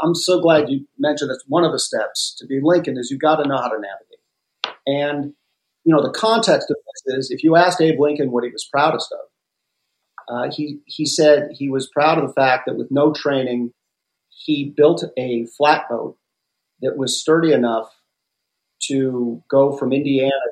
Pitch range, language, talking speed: 130-160 Hz, English, 195 wpm